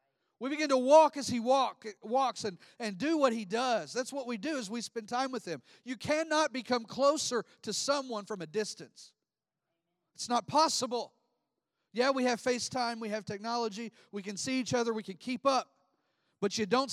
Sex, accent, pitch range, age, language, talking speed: male, American, 195-255 Hz, 40-59, English, 195 wpm